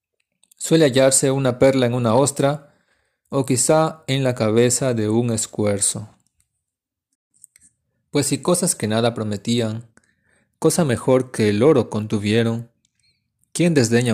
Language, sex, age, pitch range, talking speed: Spanish, male, 30-49, 110-140 Hz, 125 wpm